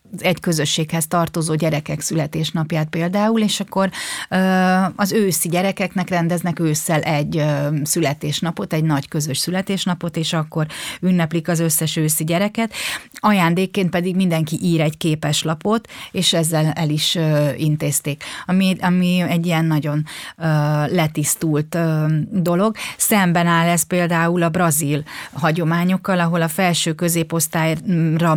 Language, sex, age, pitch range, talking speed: Hungarian, female, 30-49, 155-185 Hz, 120 wpm